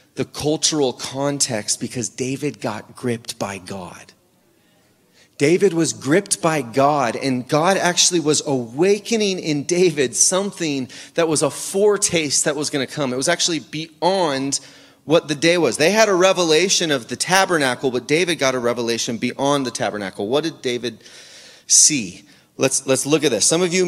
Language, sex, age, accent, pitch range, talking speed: English, male, 30-49, American, 125-175 Hz, 165 wpm